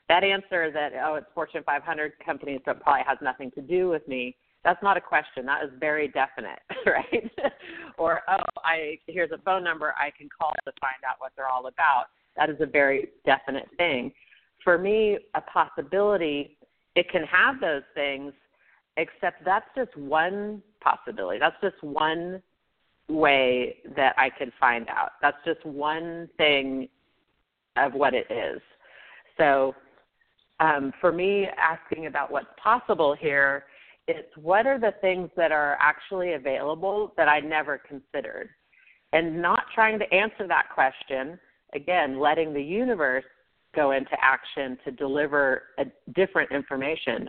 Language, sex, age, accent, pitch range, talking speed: English, female, 40-59, American, 140-185 Hz, 155 wpm